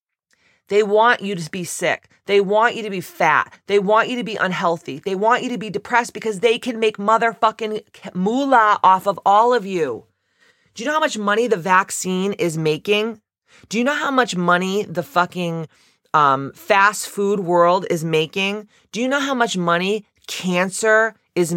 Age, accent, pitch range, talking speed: 30-49, American, 170-220 Hz, 185 wpm